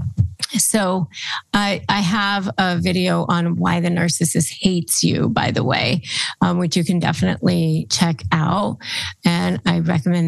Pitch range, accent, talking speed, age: 175-215 Hz, American, 145 wpm, 30-49